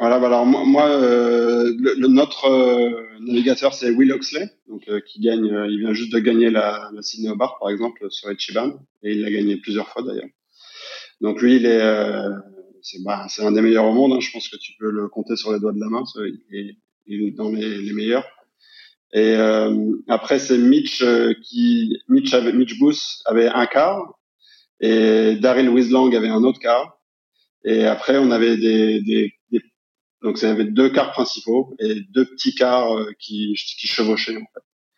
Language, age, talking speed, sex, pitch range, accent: French, 30-49, 200 wpm, male, 105-125 Hz, French